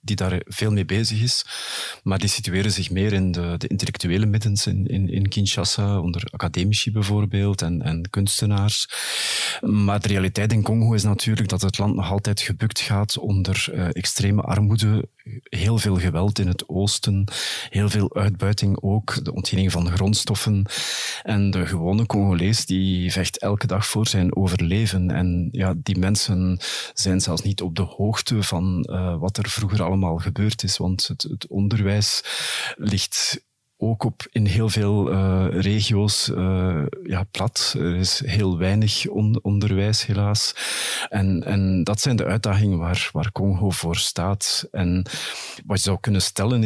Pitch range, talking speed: 95-110 Hz, 160 wpm